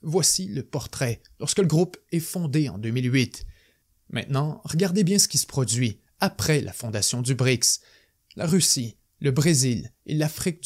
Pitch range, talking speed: 125-160 Hz, 160 wpm